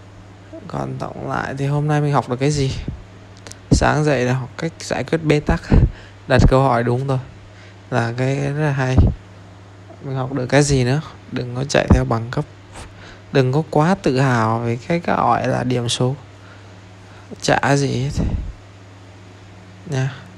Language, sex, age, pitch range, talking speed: Vietnamese, male, 20-39, 95-130 Hz, 170 wpm